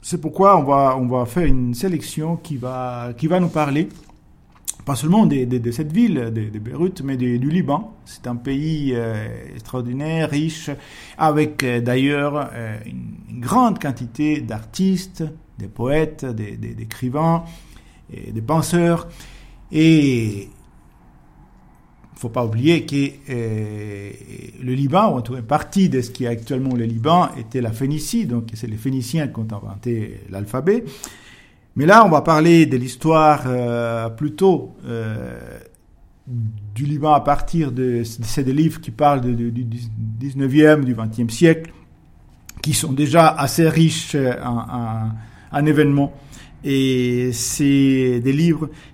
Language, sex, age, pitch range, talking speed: French, male, 50-69, 120-155 Hz, 150 wpm